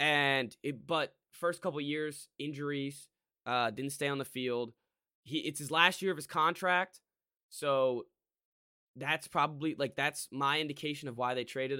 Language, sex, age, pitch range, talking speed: English, male, 10-29, 135-170 Hz, 170 wpm